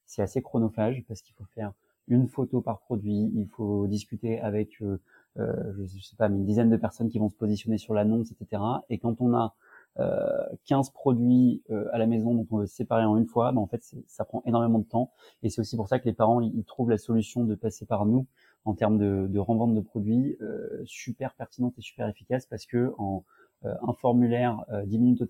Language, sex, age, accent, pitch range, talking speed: French, male, 30-49, French, 105-120 Hz, 235 wpm